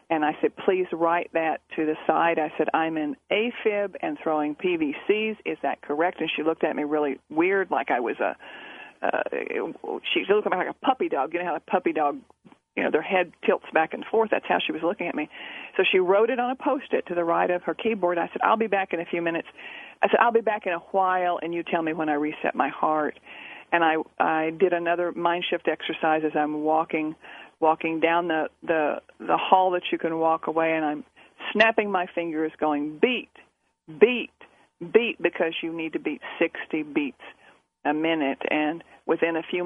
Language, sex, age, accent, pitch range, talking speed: English, female, 40-59, American, 160-200 Hz, 215 wpm